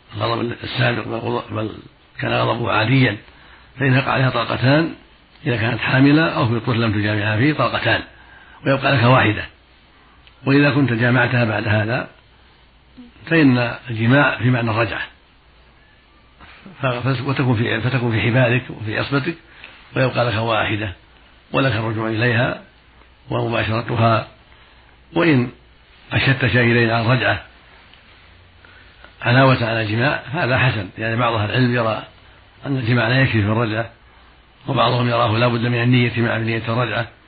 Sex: male